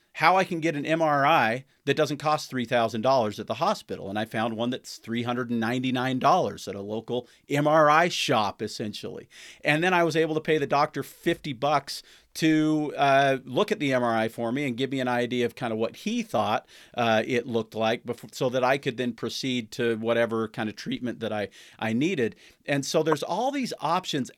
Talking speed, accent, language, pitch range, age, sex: 195 wpm, American, English, 115-145 Hz, 40-59, male